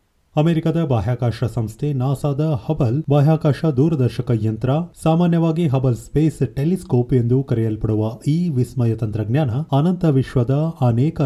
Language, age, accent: Kannada, 30-49, native